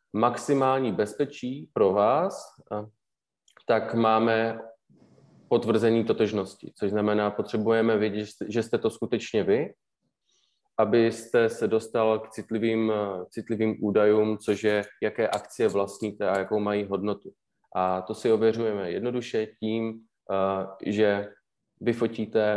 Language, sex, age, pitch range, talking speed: Czech, male, 20-39, 100-115 Hz, 110 wpm